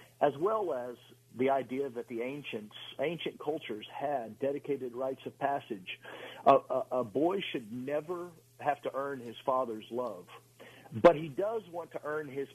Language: English